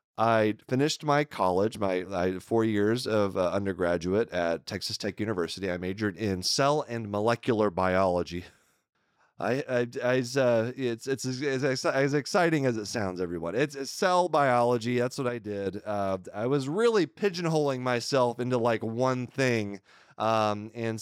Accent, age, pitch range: American, 30-49, 100-125 Hz